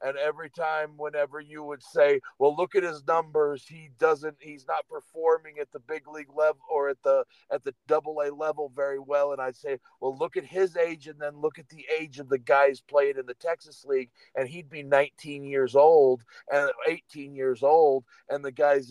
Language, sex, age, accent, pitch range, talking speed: English, male, 50-69, American, 140-170 Hz, 215 wpm